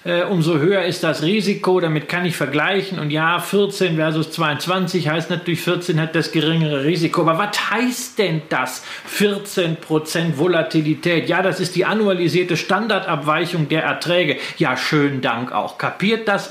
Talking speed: 155 wpm